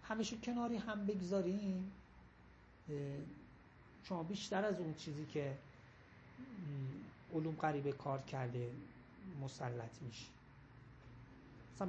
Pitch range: 130-190 Hz